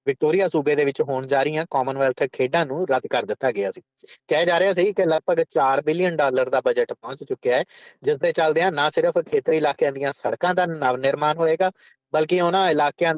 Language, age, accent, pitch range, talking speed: English, 30-49, Indian, 135-200 Hz, 210 wpm